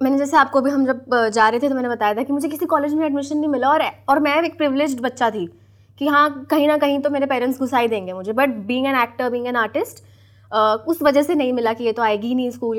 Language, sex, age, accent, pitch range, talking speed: Hindi, female, 20-39, native, 225-285 Hz, 270 wpm